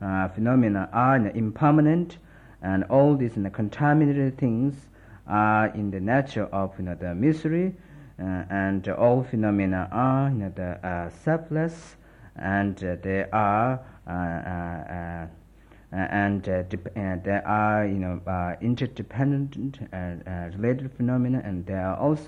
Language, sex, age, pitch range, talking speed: Italian, male, 50-69, 95-130 Hz, 115 wpm